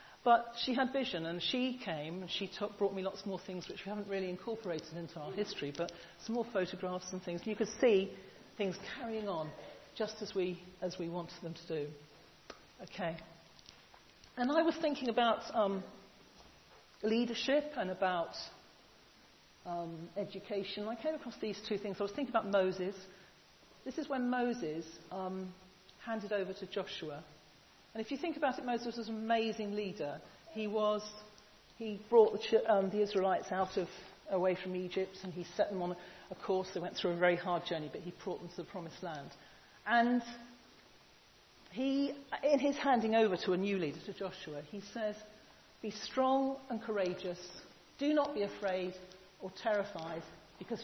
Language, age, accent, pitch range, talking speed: English, 40-59, British, 175-225 Hz, 175 wpm